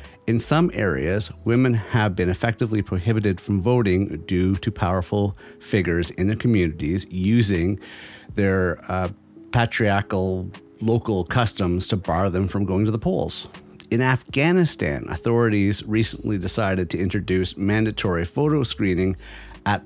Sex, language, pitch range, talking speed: male, English, 90-120 Hz, 125 wpm